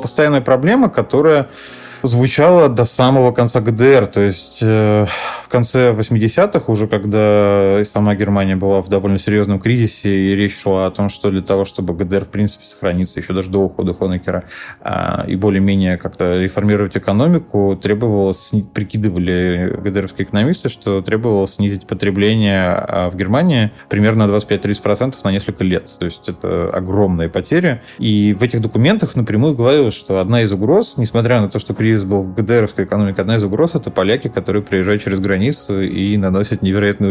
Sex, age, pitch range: male, 20-39, 100-120 Hz